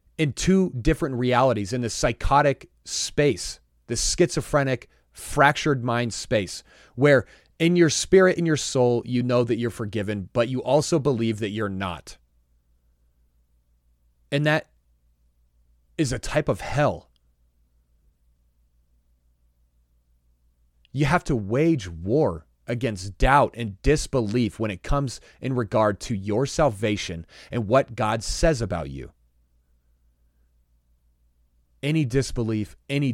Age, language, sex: 30-49, English, male